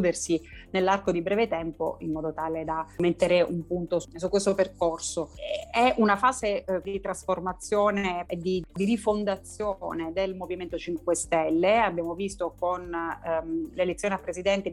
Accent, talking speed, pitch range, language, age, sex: native, 140 wpm, 170-195 Hz, Italian, 30-49, female